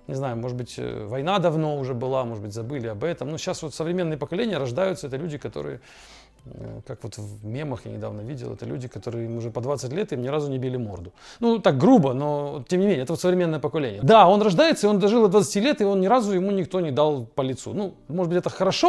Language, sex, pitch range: English, male, 125-170 Hz